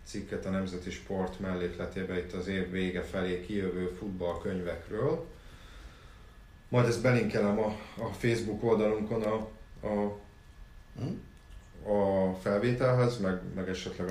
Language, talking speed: Hungarian, 110 wpm